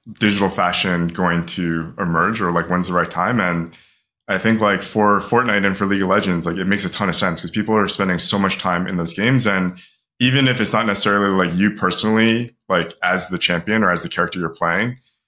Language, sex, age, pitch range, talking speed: English, male, 20-39, 90-105 Hz, 230 wpm